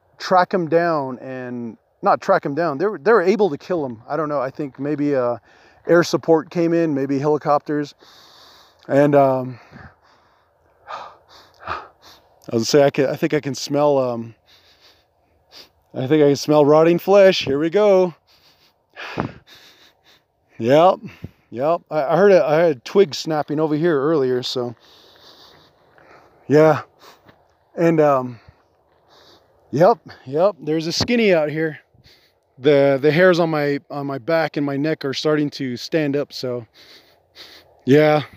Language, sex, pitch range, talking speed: English, male, 130-165 Hz, 145 wpm